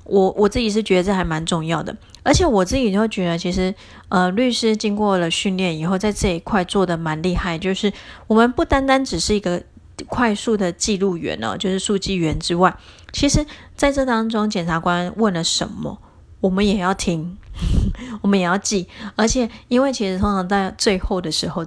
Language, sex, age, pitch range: Chinese, female, 30-49, 175-210 Hz